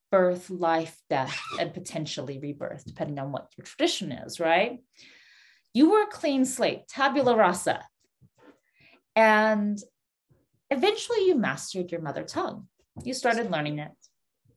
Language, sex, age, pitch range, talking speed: English, female, 30-49, 160-220 Hz, 130 wpm